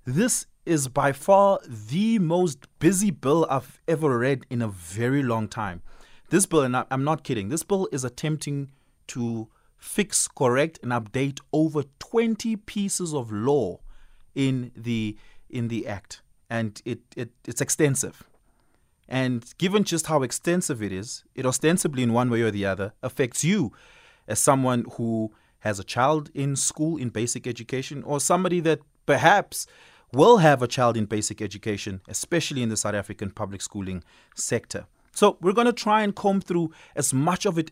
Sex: male